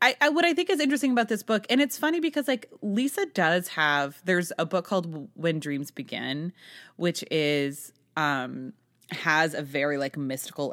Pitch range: 135-180 Hz